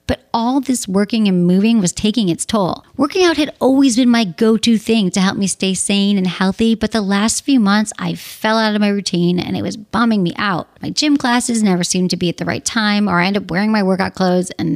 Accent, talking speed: American, 250 wpm